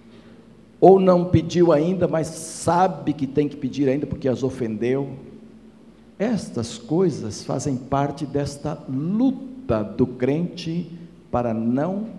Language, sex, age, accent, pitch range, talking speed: Portuguese, male, 60-79, Brazilian, 140-230 Hz, 120 wpm